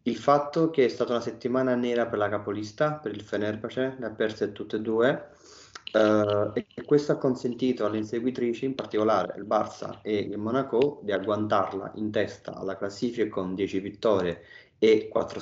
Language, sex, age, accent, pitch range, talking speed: Italian, male, 30-49, native, 100-115 Hz, 175 wpm